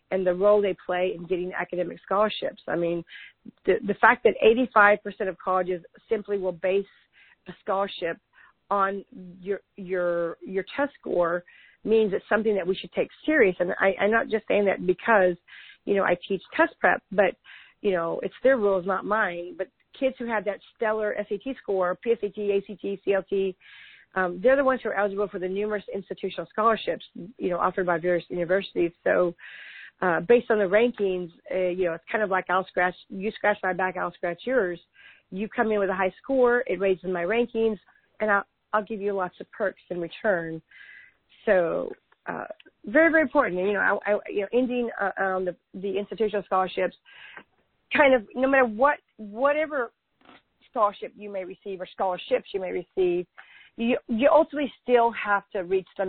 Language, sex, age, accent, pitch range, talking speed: English, female, 40-59, American, 185-225 Hz, 185 wpm